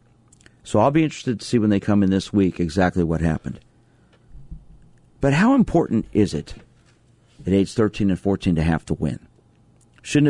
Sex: male